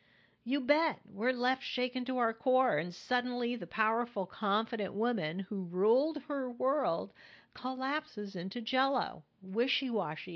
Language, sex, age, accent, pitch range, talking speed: English, female, 50-69, American, 170-235 Hz, 125 wpm